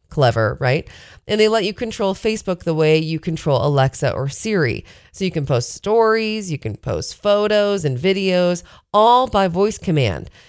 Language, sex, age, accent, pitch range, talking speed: English, female, 30-49, American, 145-205 Hz, 170 wpm